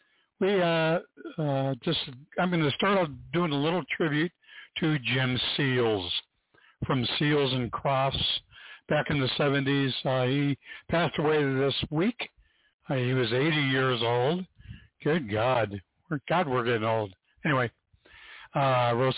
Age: 60-79